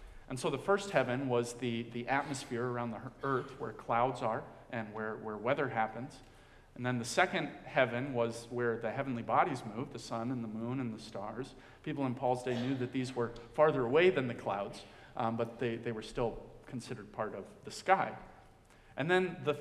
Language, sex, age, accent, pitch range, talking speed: English, male, 40-59, American, 120-165 Hz, 200 wpm